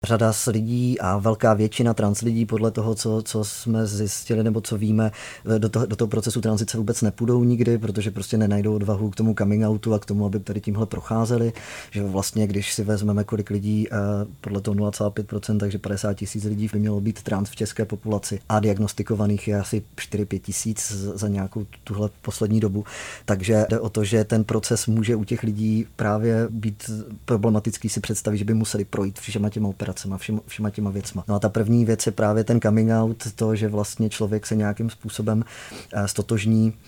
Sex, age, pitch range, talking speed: male, 30-49, 105-110 Hz, 190 wpm